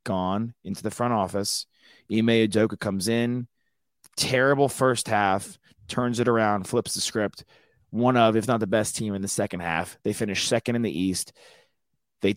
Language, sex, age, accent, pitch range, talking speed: English, male, 30-49, American, 95-120 Hz, 175 wpm